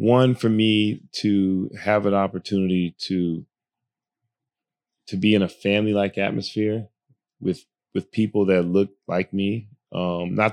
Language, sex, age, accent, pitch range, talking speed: English, male, 20-39, American, 90-105 Hz, 130 wpm